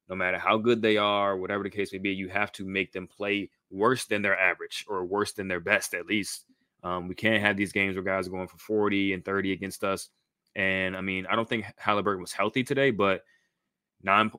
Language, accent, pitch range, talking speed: English, American, 95-105 Hz, 235 wpm